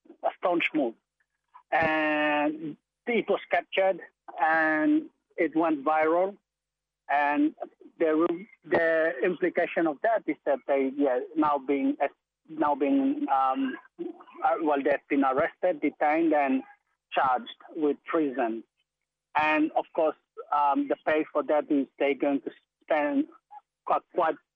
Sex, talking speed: male, 120 wpm